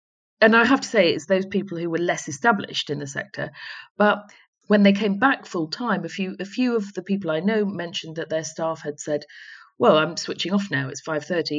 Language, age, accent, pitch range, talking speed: English, 50-69, British, 185-265 Hz, 230 wpm